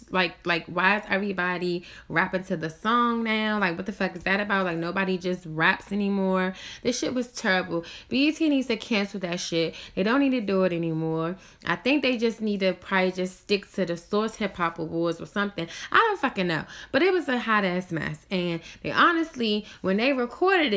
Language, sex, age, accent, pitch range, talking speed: English, female, 10-29, American, 180-235 Hz, 205 wpm